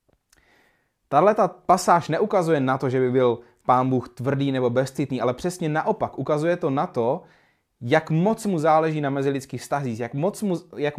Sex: male